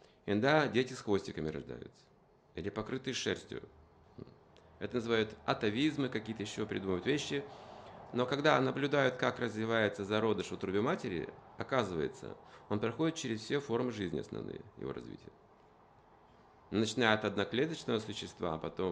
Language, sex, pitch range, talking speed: Russian, male, 100-130 Hz, 125 wpm